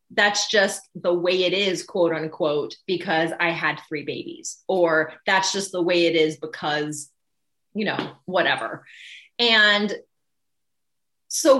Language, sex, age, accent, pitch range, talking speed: English, female, 30-49, American, 185-255 Hz, 135 wpm